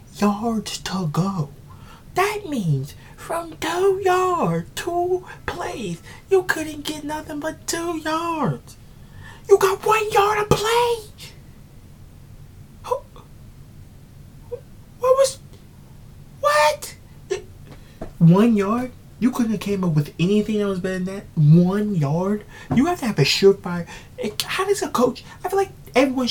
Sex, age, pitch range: male, 30-49, 145-240 Hz